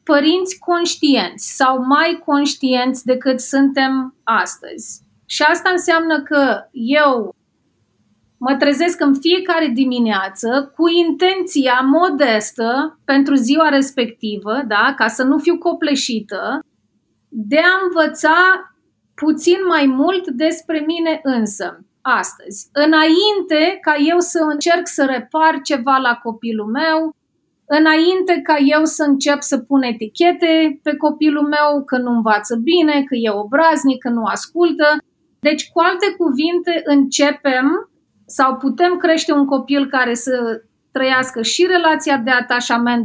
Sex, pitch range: female, 255-325 Hz